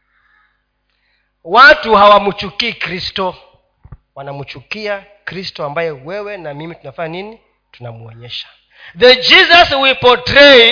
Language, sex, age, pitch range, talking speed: Swahili, male, 40-59, 185-280 Hz, 90 wpm